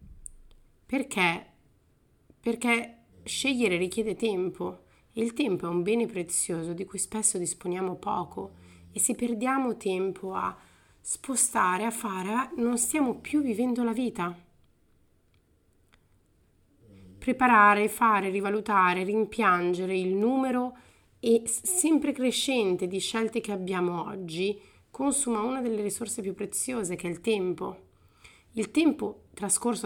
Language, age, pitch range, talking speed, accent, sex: Italian, 30-49, 180-225 Hz, 115 wpm, native, female